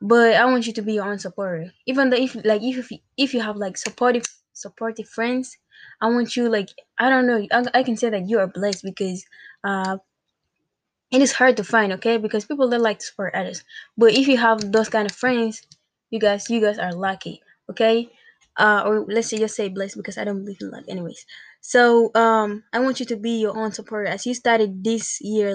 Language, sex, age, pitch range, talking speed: English, female, 10-29, 205-235 Hz, 225 wpm